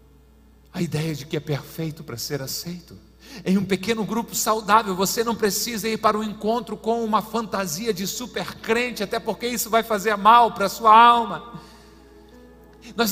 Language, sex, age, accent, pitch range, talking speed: Portuguese, male, 50-69, Brazilian, 145-230 Hz, 175 wpm